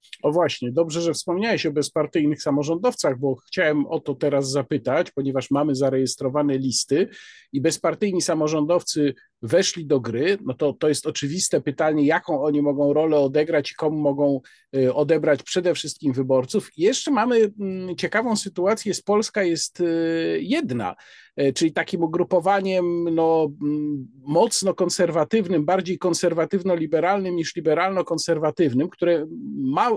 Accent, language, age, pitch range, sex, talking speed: native, Polish, 50-69, 150-195 Hz, male, 125 wpm